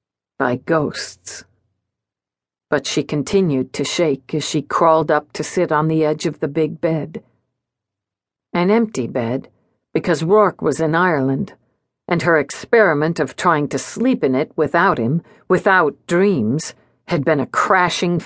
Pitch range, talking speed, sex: 140-200 Hz, 150 wpm, female